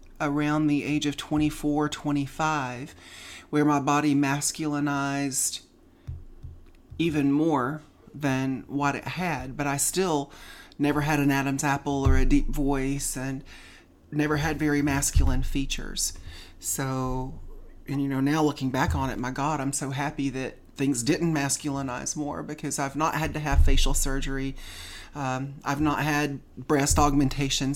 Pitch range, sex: 135-150 Hz, male